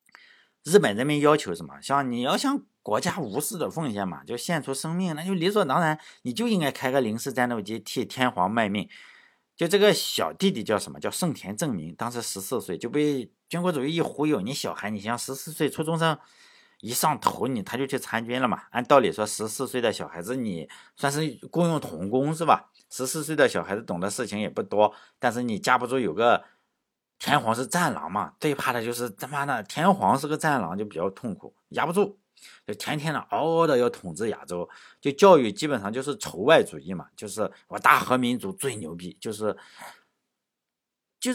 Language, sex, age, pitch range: Chinese, male, 50-69, 120-170 Hz